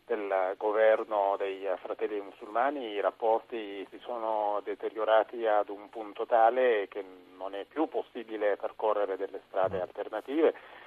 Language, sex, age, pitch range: Italian, male, 40-59, 100-120 Hz